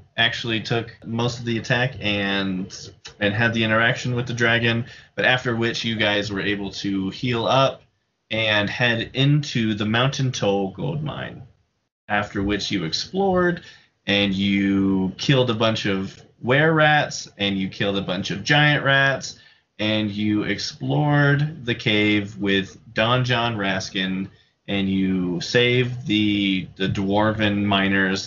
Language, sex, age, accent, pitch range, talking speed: English, male, 20-39, American, 100-120 Hz, 145 wpm